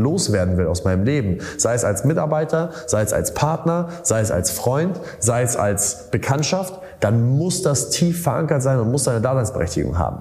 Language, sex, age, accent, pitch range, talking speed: German, male, 30-49, German, 115-150 Hz, 190 wpm